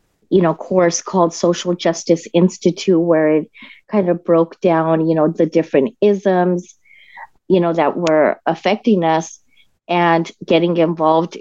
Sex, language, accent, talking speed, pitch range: female, English, American, 140 wpm, 165-190 Hz